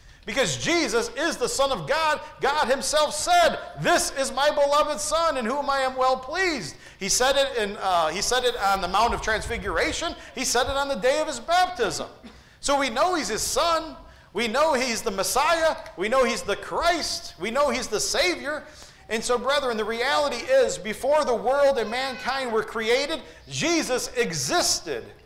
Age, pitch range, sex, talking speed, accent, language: 40-59, 210-305 Hz, male, 180 wpm, American, English